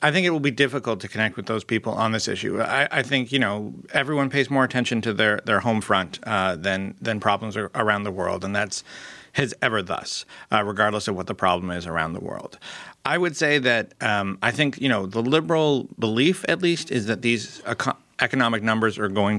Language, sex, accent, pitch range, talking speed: English, male, American, 105-125 Hz, 230 wpm